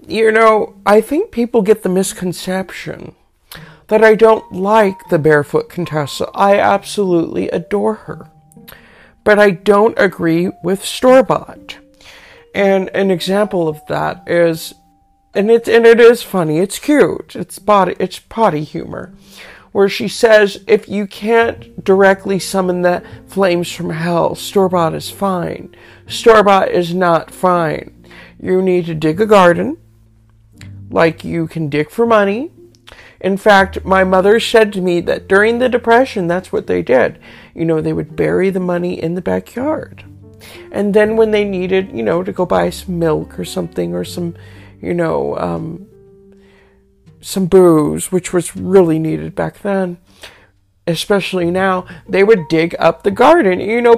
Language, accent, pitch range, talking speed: English, American, 160-205 Hz, 150 wpm